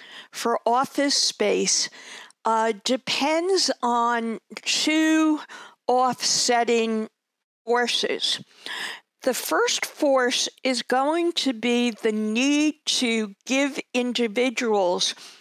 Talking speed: 80 wpm